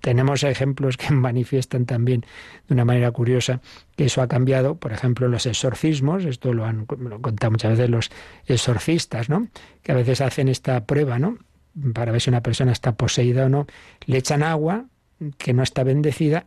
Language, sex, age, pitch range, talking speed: Spanish, male, 60-79, 120-150 Hz, 185 wpm